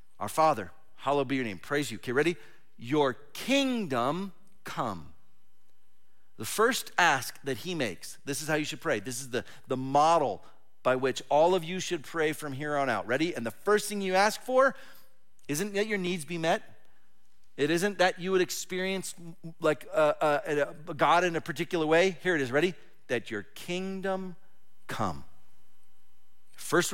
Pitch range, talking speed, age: 135-185 Hz, 175 wpm, 40-59